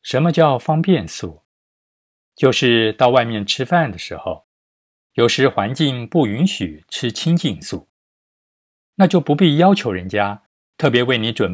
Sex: male